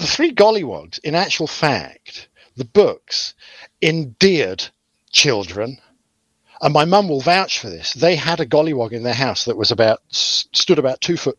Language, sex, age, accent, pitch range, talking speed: English, male, 50-69, British, 100-155 Hz, 165 wpm